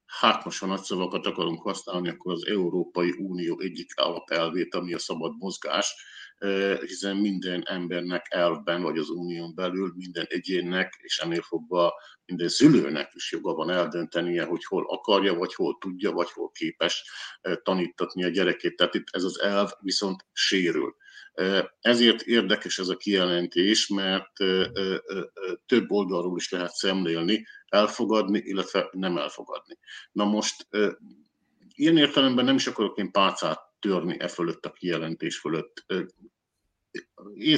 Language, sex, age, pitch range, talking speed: Hungarian, male, 50-69, 90-115 Hz, 135 wpm